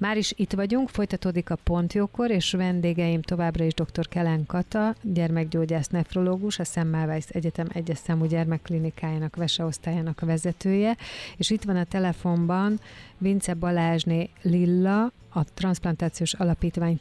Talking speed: 125 wpm